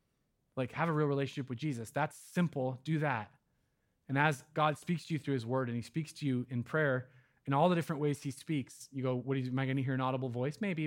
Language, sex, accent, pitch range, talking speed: English, male, American, 130-175 Hz, 245 wpm